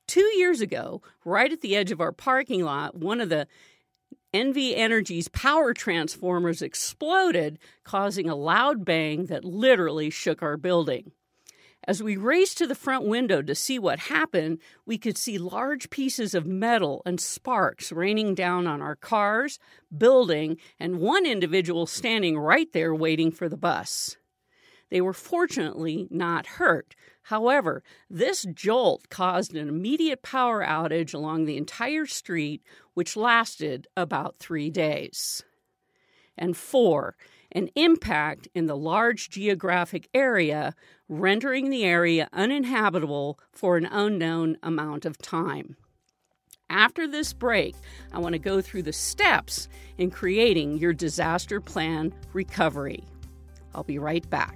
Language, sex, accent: English, female, American